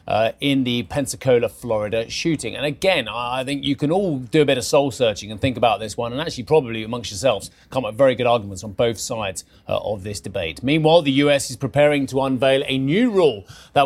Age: 30-49